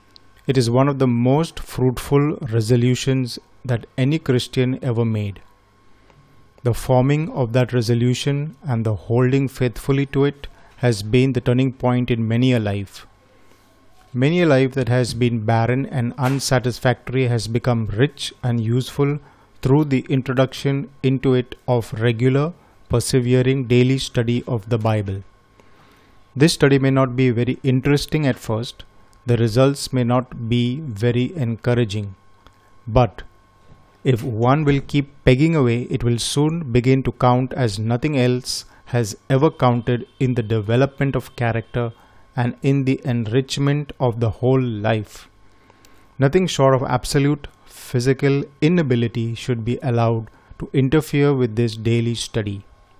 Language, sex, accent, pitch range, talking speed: Hindi, male, native, 115-135 Hz, 140 wpm